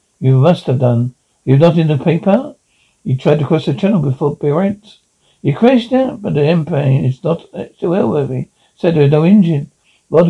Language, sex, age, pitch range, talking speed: English, male, 60-79, 145-190 Hz, 200 wpm